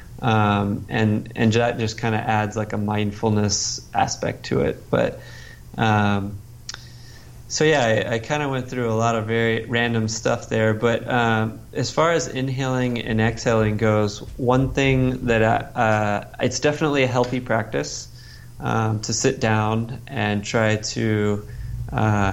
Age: 20-39